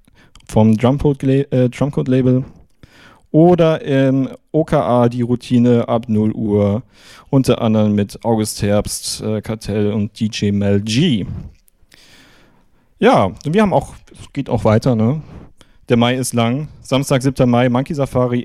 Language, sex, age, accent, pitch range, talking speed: German, male, 40-59, German, 115-140 Hz, 130 wpm